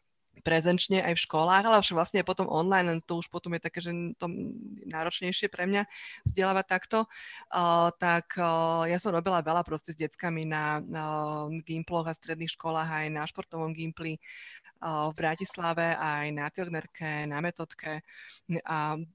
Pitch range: 155-175 Hz